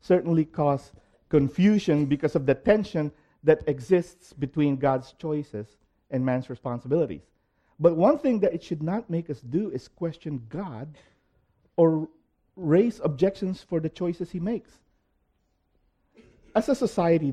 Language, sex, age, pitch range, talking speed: English, male, 50-69, 115-160 Hz, 135 wpm